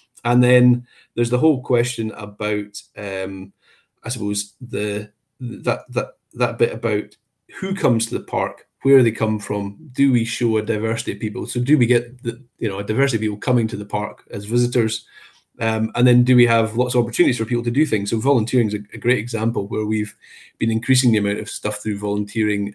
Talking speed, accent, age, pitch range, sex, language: 215 wpm, British, 30-49, 105-125 Hz, male, English